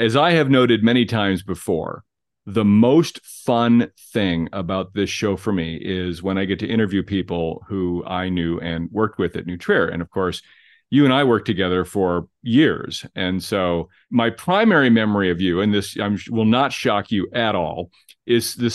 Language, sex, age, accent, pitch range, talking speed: English, male, 40-59, American, 95-140 Hz, 185 wpm